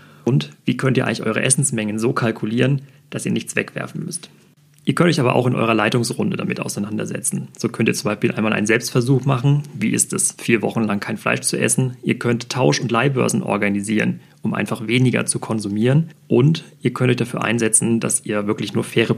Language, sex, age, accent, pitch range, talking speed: German, male, 40-59, German, 110-140 Hz, 205 wpm